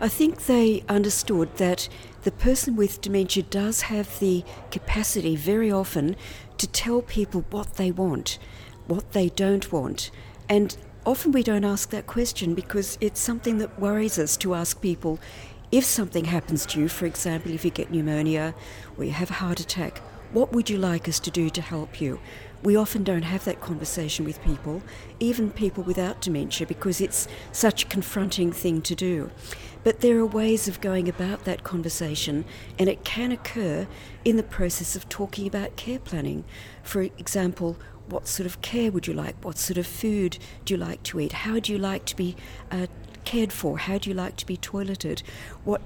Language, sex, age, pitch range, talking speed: English, female, 50-69, 160-205 Hz, 190 wpm